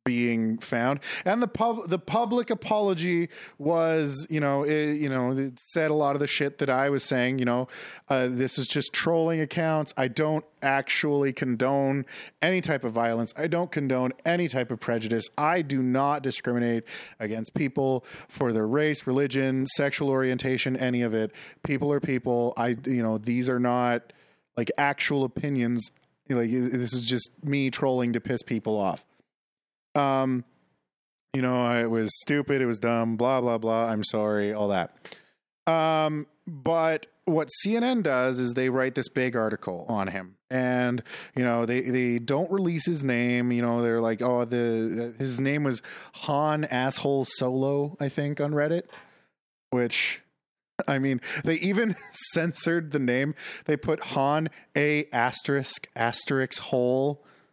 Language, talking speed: English, 160 wpm